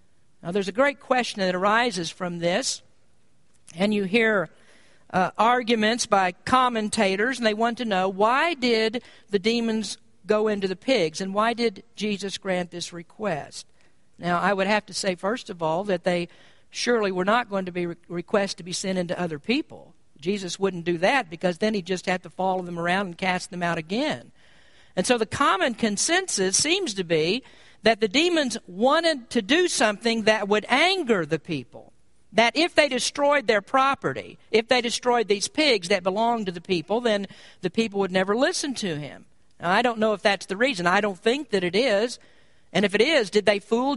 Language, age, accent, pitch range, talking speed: English, 50-69, American, 190-250 Hz, 195 wpm